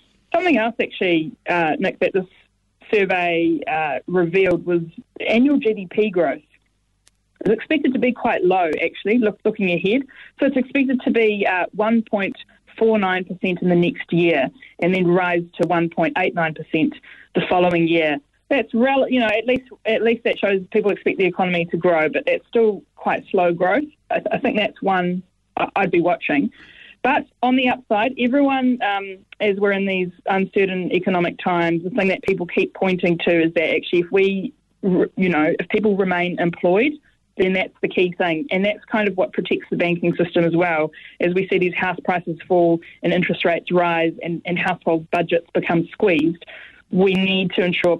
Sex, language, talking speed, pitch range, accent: female, English, 190 wpm, 175-220 Hz, Australian